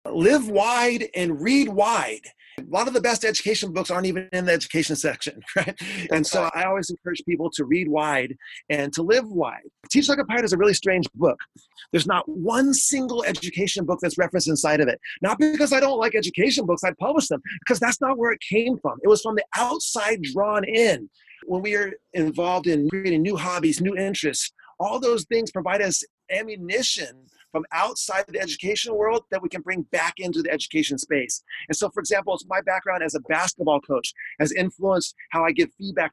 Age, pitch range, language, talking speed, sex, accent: 30-49, 165-205 Hz, English, 205 wpm, male, American